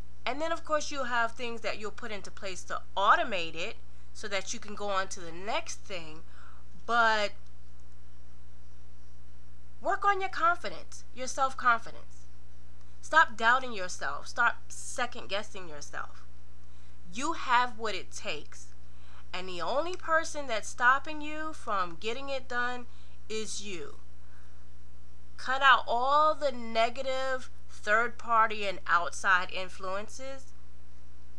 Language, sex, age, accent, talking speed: English, female, 30-49, American, 125 wpm